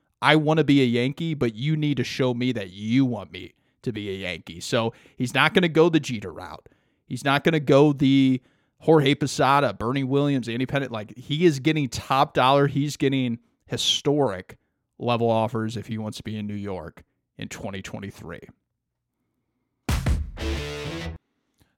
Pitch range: 110-140 Hz